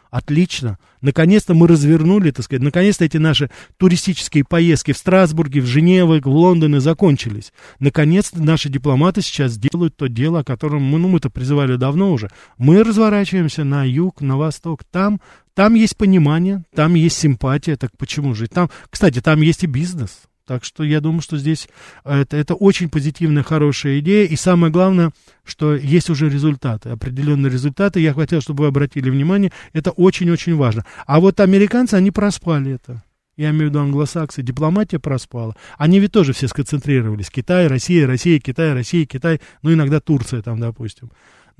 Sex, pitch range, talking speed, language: male, 135-175 Hz, 165 wpm, Russian